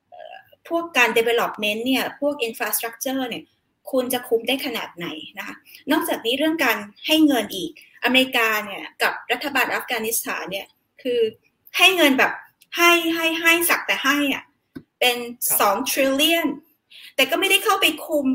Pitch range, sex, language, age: 235-305 Hz, female, Thai, 20-39